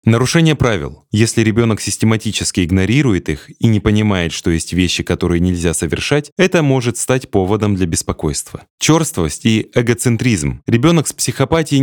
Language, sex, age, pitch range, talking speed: Russian, male, 20-39, 90-130 Hz, 140 wpm